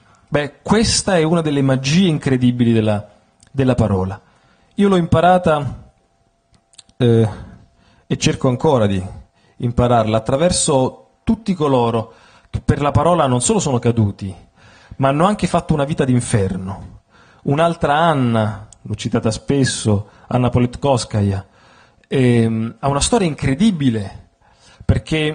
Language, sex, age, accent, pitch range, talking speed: Italian, male, 40-59, native, 110-160 Hz, 120 wpm